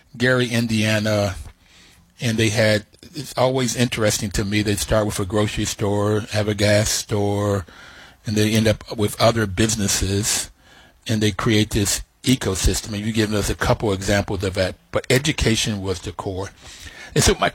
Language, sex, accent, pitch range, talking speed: English, male, American, 100-125 Hz, 170 wpm